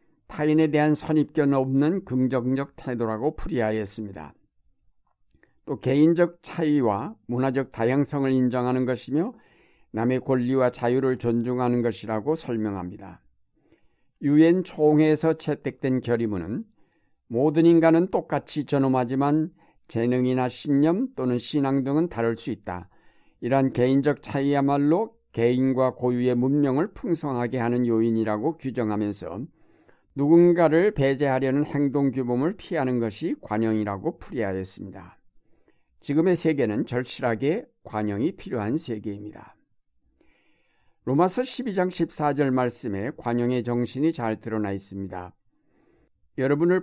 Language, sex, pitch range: Korean, male, 115-150 Hz